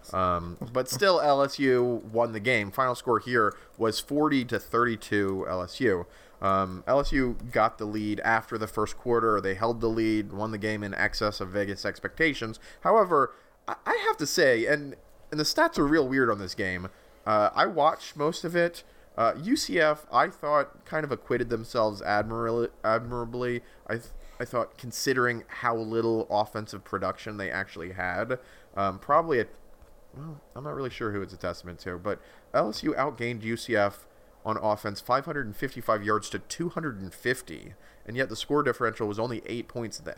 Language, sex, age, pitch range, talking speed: English, male, 30-49, 100-130 Hz, 170 wpm